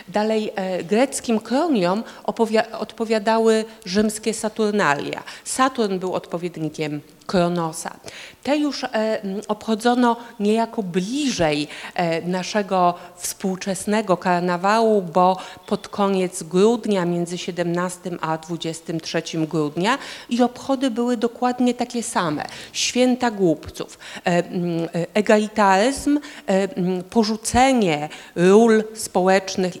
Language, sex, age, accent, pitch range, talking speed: Polish, female, 50-69, native, 175-225 Hz, 95 wpm